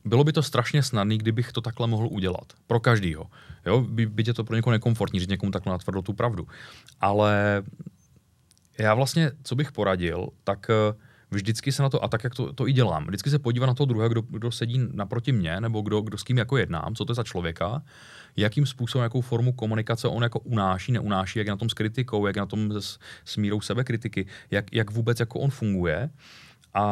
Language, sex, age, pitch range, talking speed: Czech, male, 30-49, 105-125 Hz, 210 wpm